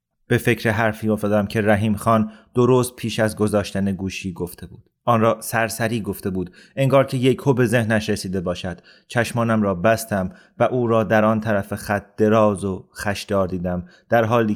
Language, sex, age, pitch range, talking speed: Persian, male, 30-49, 100-115 Hz, 175 wpm